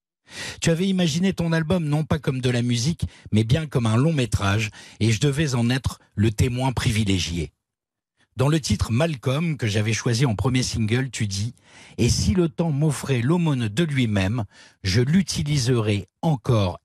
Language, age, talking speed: French, 50-69, 175 wpm